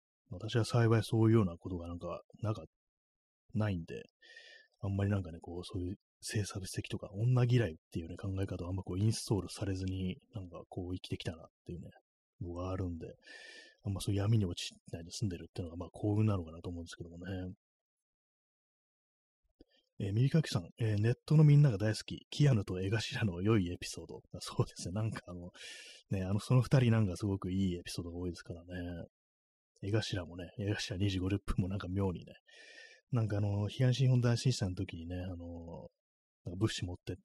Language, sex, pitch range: Japanese, male, 90-110 Hz